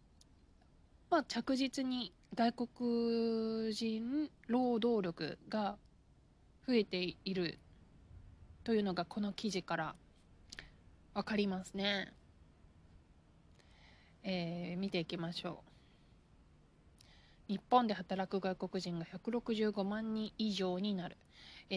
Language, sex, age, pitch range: Japanese, female, 20-39, 175-235 Hz